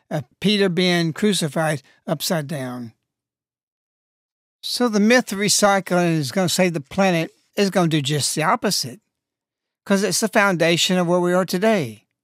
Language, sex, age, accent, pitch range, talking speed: English, male, 60-79, American, 160-215 Hz, 160 wpm